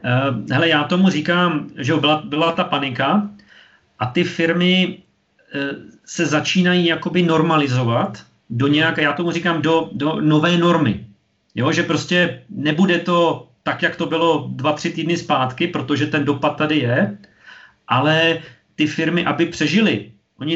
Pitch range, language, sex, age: 140-170 Hz, Czech, male, 40-59